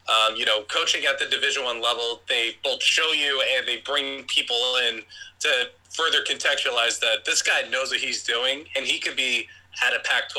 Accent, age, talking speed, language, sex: American, 20-39, 200 wpm, English, male